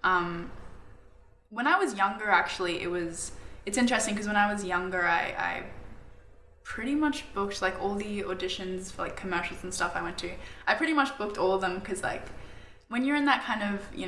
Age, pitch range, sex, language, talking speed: 10-29, 175-205 Hz, female, English, 205 wpm